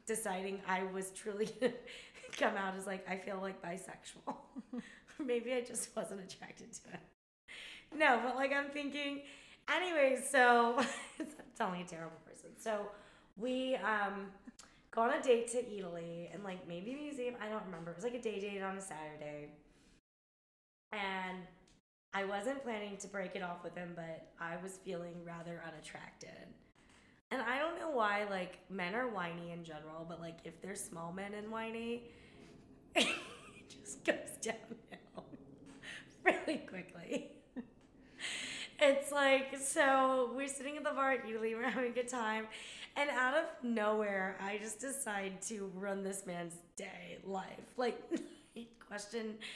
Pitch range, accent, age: 185-255 Hz, American, 20-39